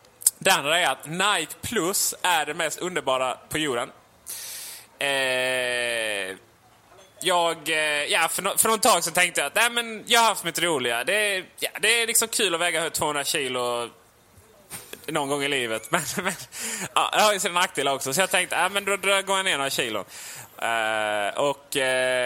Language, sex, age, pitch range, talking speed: Swedish, male, 20-39, 130-190 Hz, 180 wpm